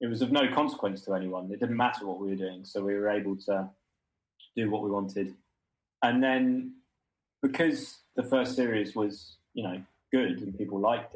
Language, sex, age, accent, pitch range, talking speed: English, male, 20-39, British, 95-120 Hz, 195 wpm